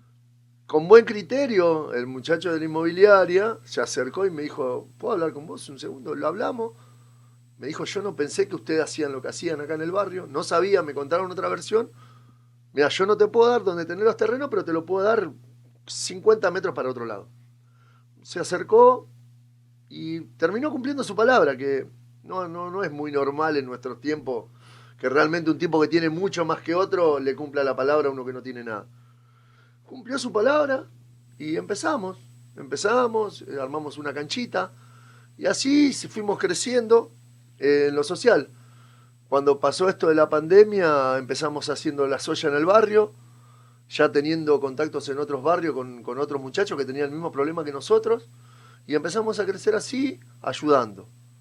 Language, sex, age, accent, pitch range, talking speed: Spanish, male, 40-59, Argentinian, 125-185 Hz, 175 wpm